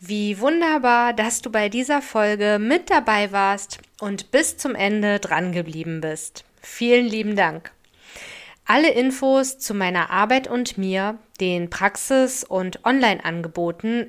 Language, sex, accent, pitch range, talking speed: German, female, German, 190-245 Hz, 130 wpm